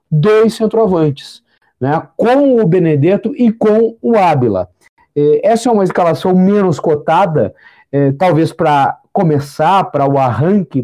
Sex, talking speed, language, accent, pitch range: male, 120 wpm, Portuguese, Brazilian, 150-190 Hz